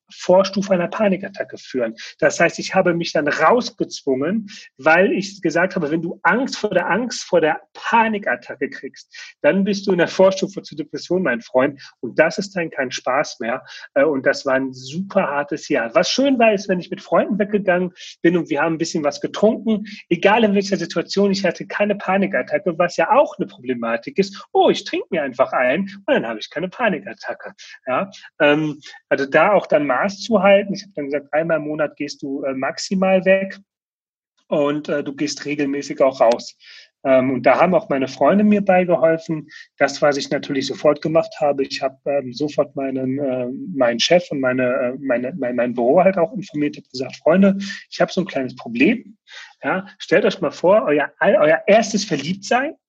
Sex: male